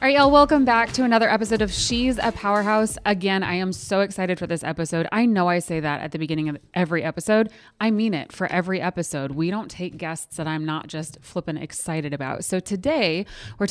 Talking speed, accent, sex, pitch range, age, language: 225 wpm, American, female, 155-195 Hz, 20-39, English